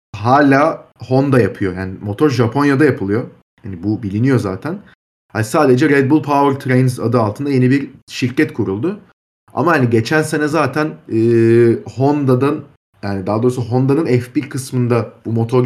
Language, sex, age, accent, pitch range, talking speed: Turkish, male, 30-49, native, 110-140 Hz, 145 wpm